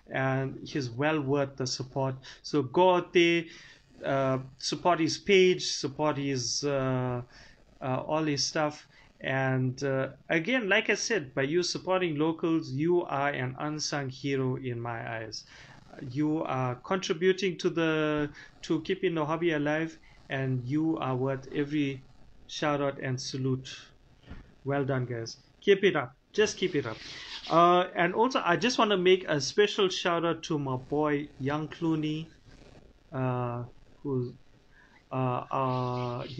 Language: English